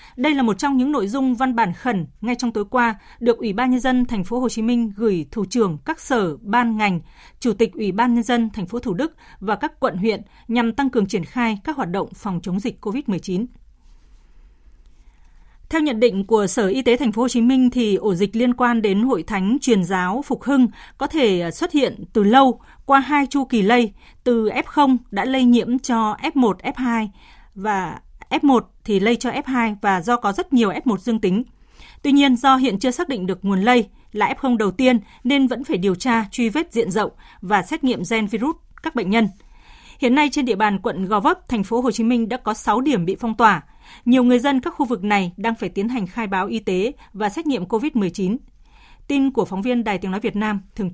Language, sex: Vietnamese, female